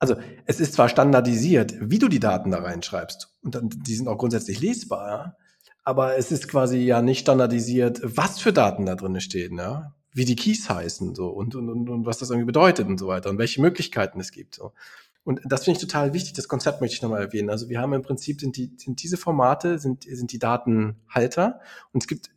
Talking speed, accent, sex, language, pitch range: 225 wpm, German, male, German, 120-170 Hz